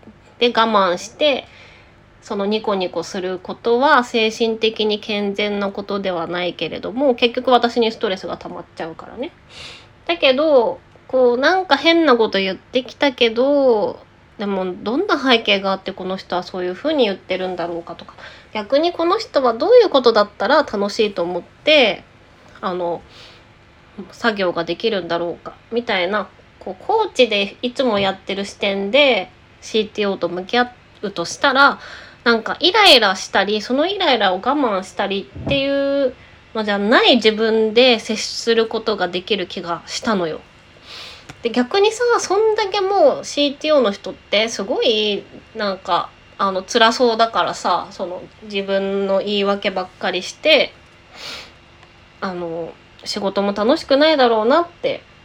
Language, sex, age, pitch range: Japanese, female, 20-39, 190-265 Hz